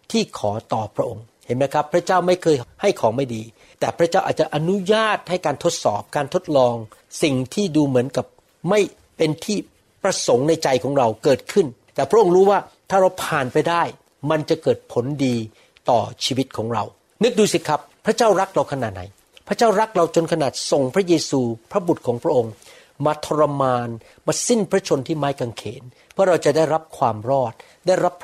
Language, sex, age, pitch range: Thai, male, 60-79, 130-180 Hz